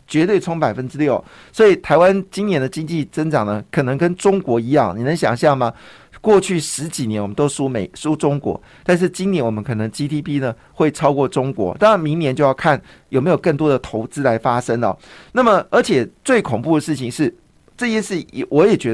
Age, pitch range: 50-69, 130-180 Hz